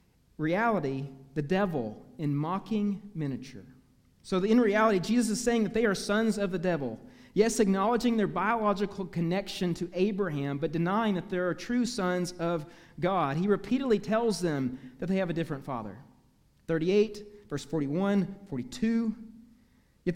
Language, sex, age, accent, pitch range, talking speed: English, male, 40-59, American, 160-215 Hz, 150 wpm